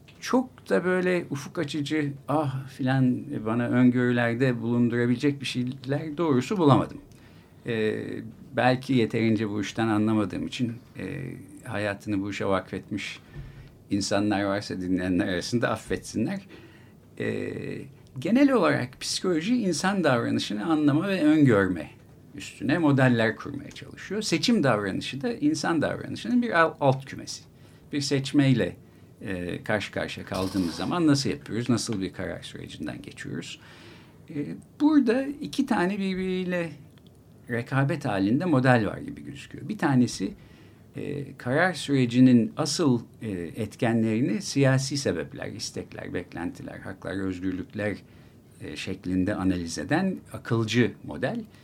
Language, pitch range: Turkish, 110-155 Hz